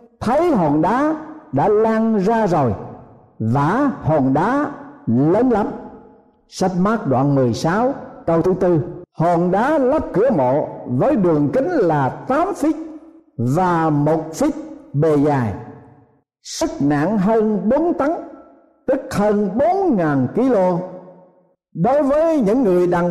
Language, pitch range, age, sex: Thai, 165-255 Hz, 60-79, male